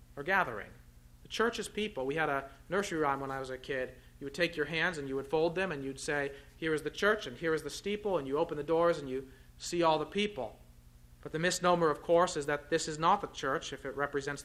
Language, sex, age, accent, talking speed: English, male, 40-59, American, 260 wpm